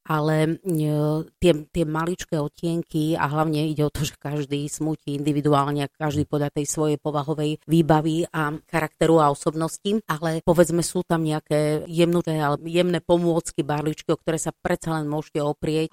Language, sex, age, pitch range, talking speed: Slovak, female, 30-49, 145-160 Hz, 160 wpm